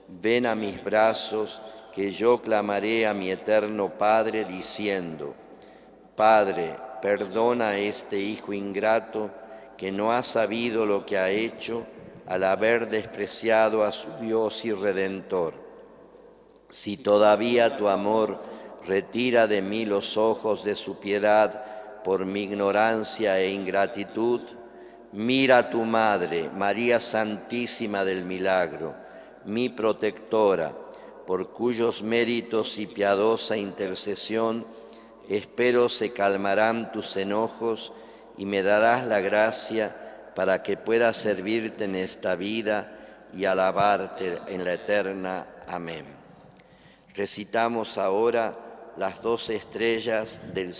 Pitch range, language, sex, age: 100-115 Hz, Spanish, male, 50-69